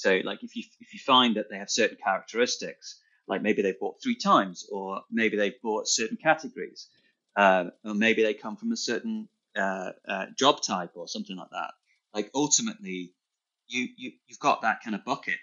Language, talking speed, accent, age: English, 195 wpm, British, 30-49